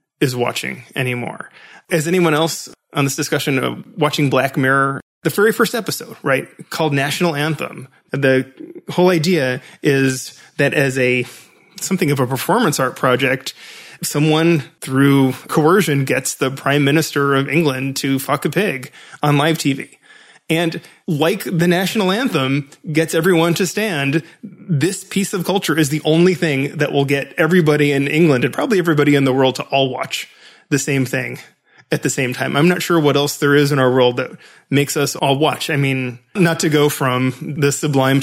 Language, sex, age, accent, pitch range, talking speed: English, male, 20-39, American, 140-170 Hz, 175 wpm